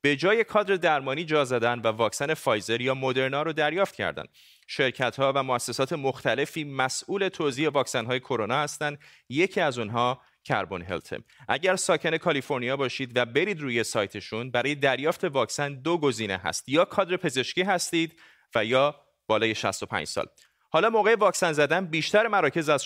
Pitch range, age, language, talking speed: 120-155 Hz, 30-49, Persian, 155 wpm